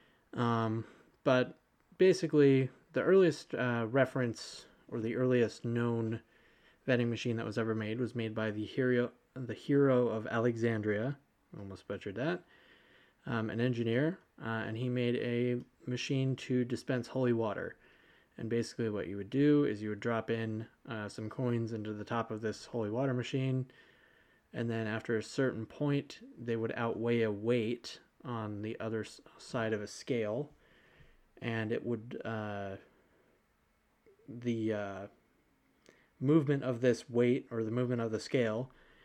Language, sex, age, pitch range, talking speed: English, male, 20-39, 110-125 Hz, 150 wpm